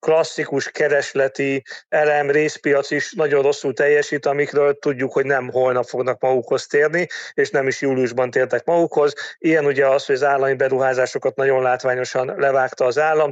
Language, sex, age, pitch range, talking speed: Hungarian, male, 40-59, 135-155 Hz, 155 wpm